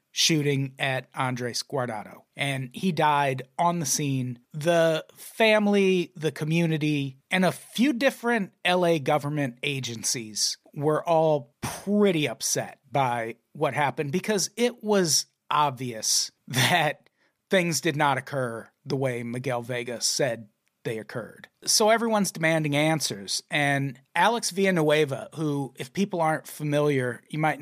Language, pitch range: English, 135-180 Hz